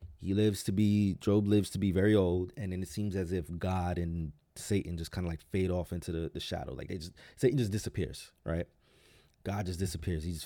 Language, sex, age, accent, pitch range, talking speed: English, male, 30-49, American, 90-105 Hz, 235 wpm